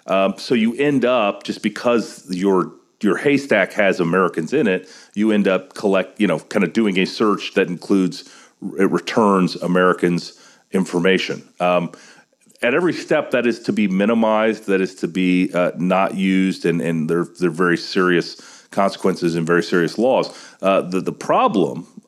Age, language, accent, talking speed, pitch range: 40-59, English, American, 170 wpm, 90-115 Hz